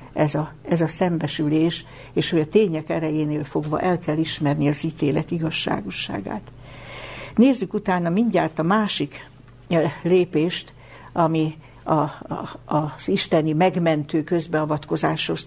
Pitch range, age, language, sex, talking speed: 150-180 Hz, 60-79, Hungarian, female, 105 wpm